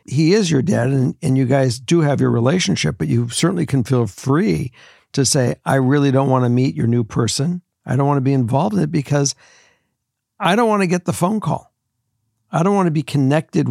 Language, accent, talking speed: English, American, 230 wpm